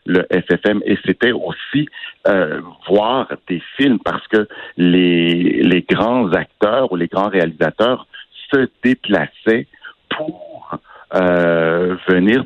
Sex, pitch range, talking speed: male, 85-110 Hz, 115 wpm